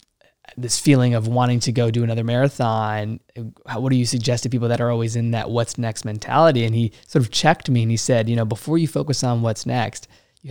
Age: 20-39